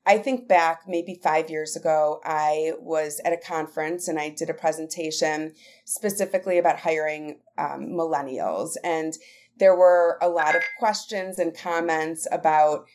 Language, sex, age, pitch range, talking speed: English, female, 30-49, 155-180 Hz, 150 wpm